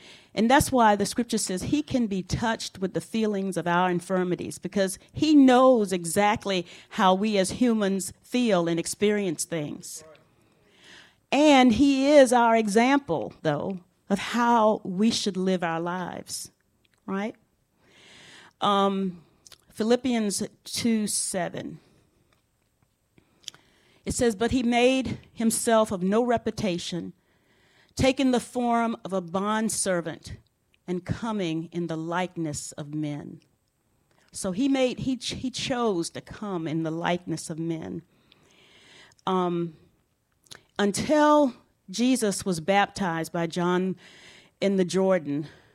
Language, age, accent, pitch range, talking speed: English, 40-59, American, 170-230 Hz, 120 wpm